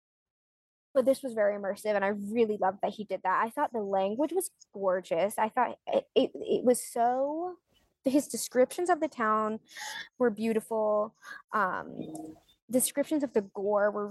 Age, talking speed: 20-39, 165 wpm